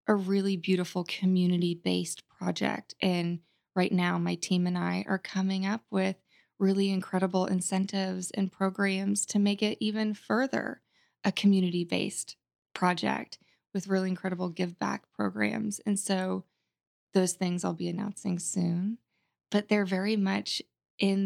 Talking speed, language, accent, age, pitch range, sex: 135 wpm, English, American, 20-39, 180-200 Hz, female